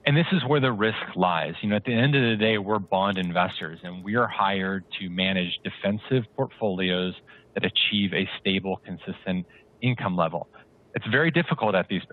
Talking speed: 185 wpm